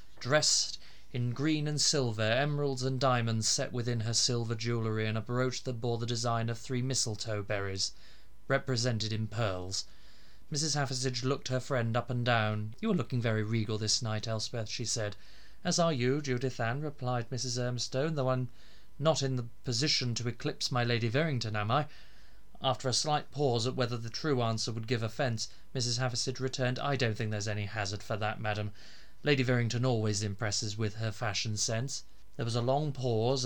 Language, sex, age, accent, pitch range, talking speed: English, male, 20-39, British, 110-130 Hz, 185 wpm